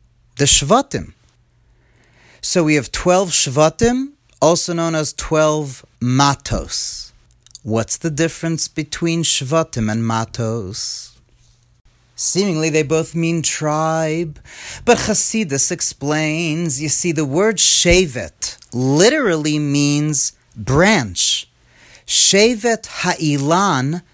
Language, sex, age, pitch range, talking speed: English, male, 40-59, 135-175 Hz, 90 wpm